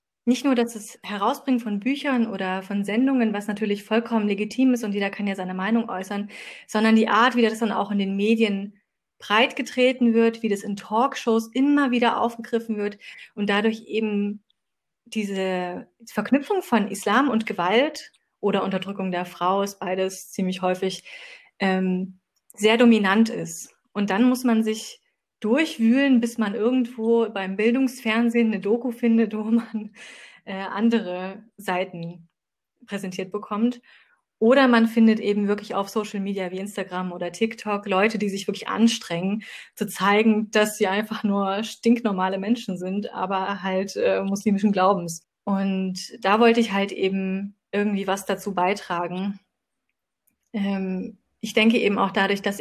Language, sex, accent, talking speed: German, female, German, 150 wpm